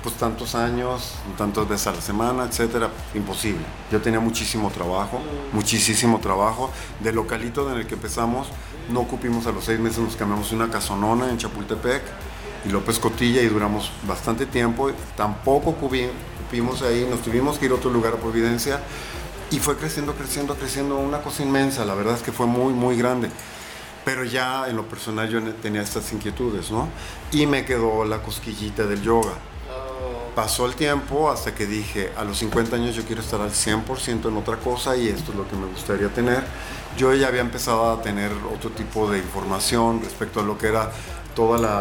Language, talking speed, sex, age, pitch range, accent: Spanish, 185 wpm, male, 50-69, 105-125 Hz, Mexican